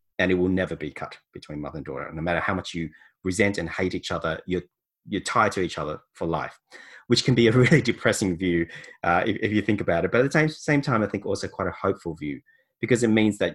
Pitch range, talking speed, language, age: 85-110 Hz, 260 wpm, English, 30-49